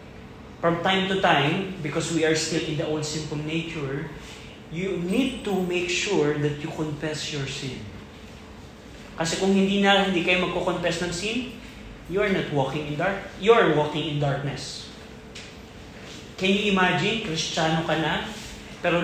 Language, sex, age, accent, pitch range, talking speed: Filipino, male, 20-39, native, 155-190 Hz, 155 wpm